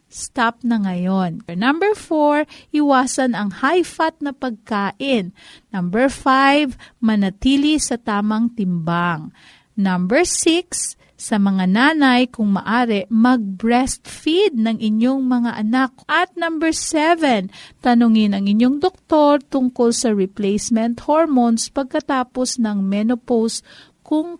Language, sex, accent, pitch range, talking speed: Filipino, female, native, 215-300 Hz, 105 wpm